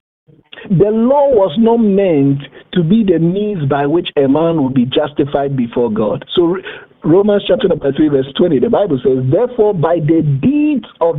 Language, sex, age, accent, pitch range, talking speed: English, male, 50-69, Nigerian, 145-230 Hz, 170 wpm